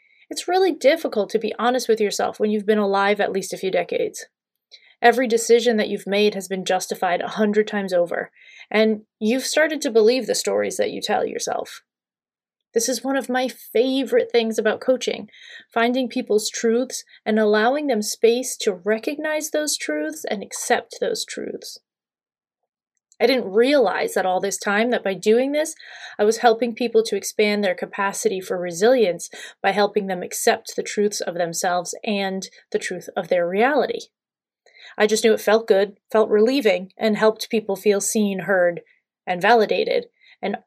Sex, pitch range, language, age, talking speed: female, 205-260 Hz, English, 30-49, 170 wpm